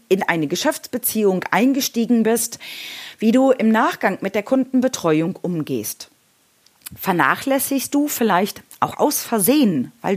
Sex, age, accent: female, 30-49, German